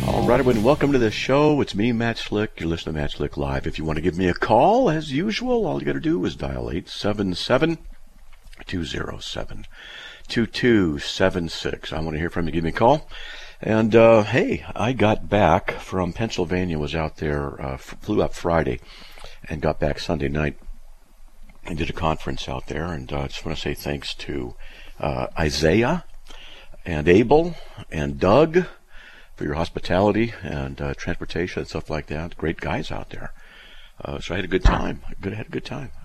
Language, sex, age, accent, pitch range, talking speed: English, male, 50-69, American, 75-100 Hz, 185 wpm